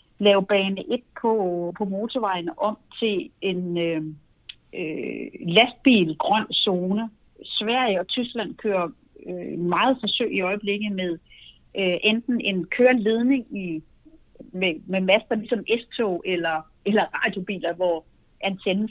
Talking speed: 125 wpm